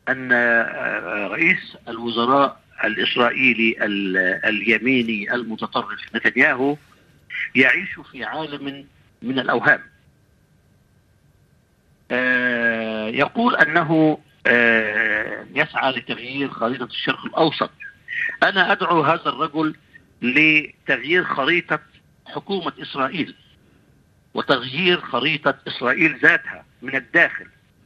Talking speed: 70 wpm